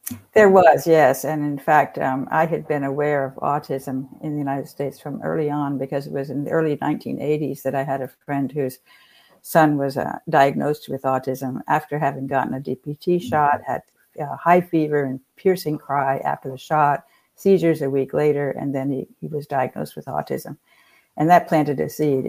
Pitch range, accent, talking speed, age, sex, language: 140-155 Hz, American, 190 wpm, 60-79, female, English